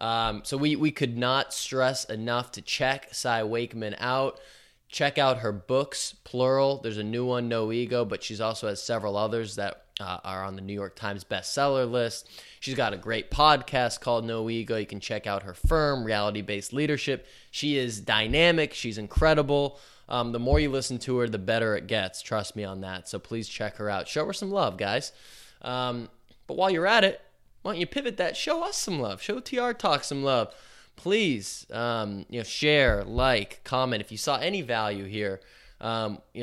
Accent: American